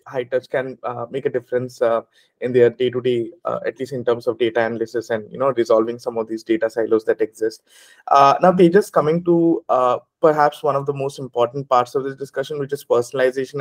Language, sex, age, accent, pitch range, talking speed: English, male, 20-39, Indian, 125-160 Hz, 210 wpm